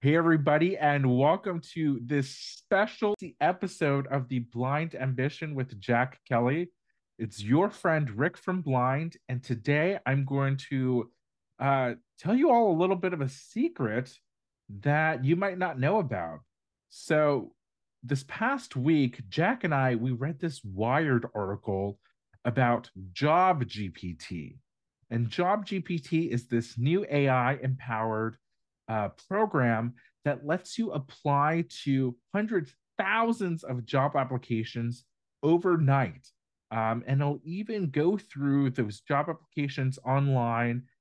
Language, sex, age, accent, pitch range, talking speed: English, male, 30-49, American, 125-170 Hz, 130 wpm